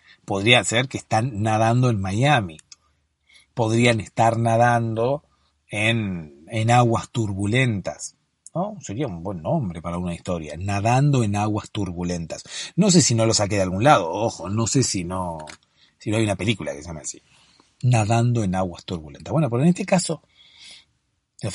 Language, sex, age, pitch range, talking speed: Spanish, male, 40-59, 95-125 Hz, 165 wpm